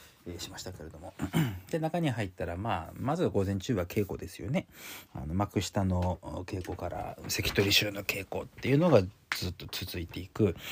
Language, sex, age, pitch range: Japanese, male, 40-59, 90-130 Hz